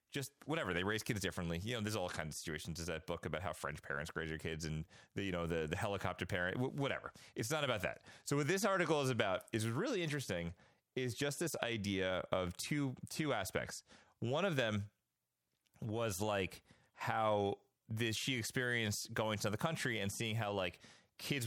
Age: 30-49